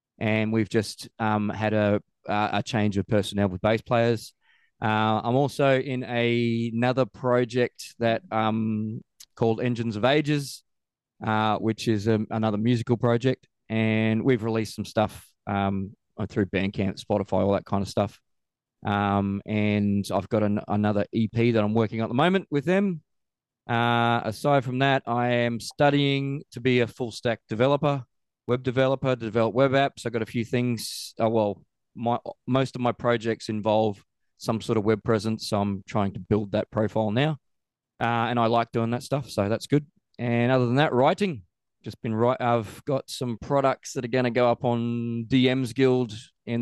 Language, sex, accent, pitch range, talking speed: English, male, Australian, 105-125 Hz, 175 wpm